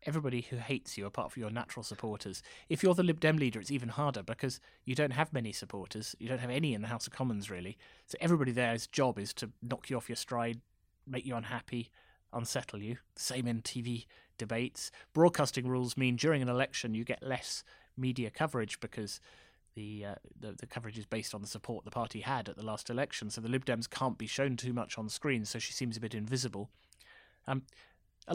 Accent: British